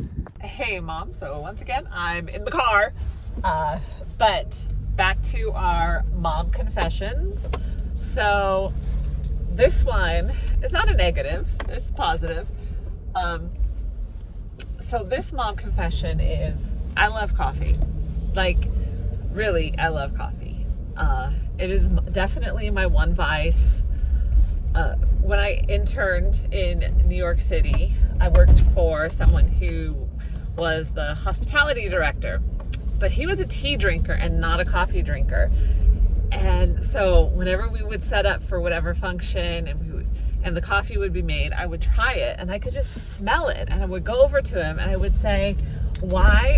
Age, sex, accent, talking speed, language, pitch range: 30-49, female, American, 150 wpm, English, 70-85 Hz